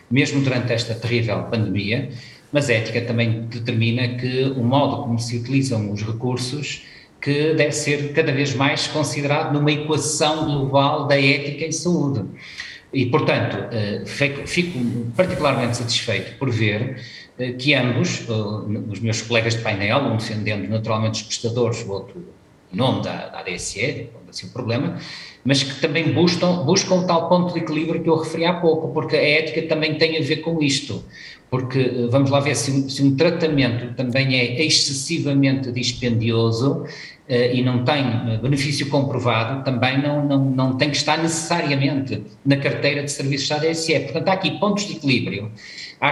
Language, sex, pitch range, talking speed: Portuguese, male, 120-150 Hz, 165 wpm